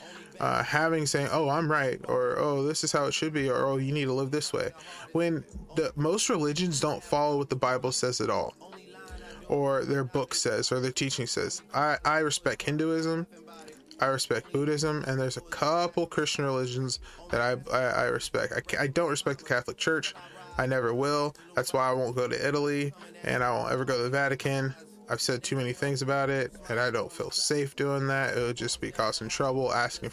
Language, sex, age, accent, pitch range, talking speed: English, male, 20-39, American, 130-155 Hz, 210 wpm